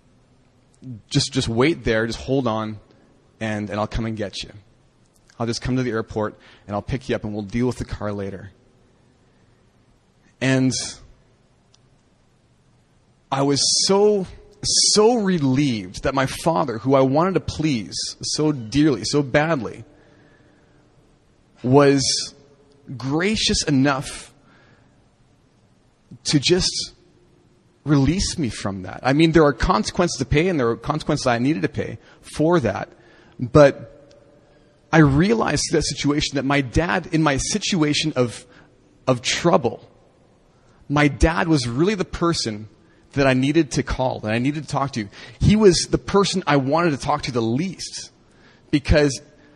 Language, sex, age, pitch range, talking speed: English, male, 30-49, 120-155 Hz, 145 wpm